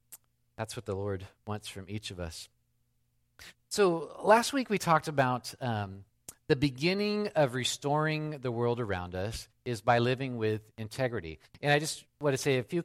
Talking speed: 175 wpm